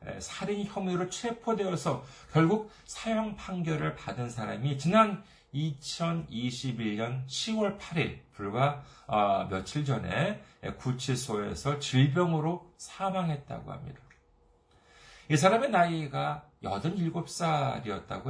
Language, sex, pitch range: Korean, male, 140-205 Hz